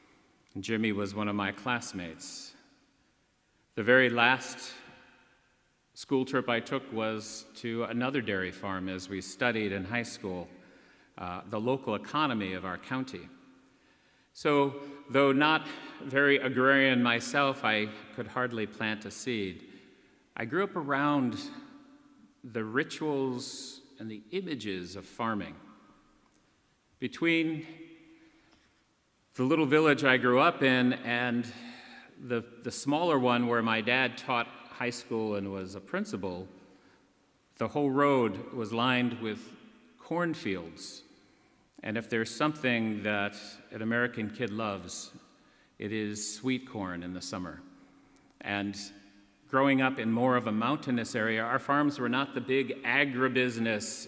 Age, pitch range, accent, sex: 40-59, 105-135 Hz, American, male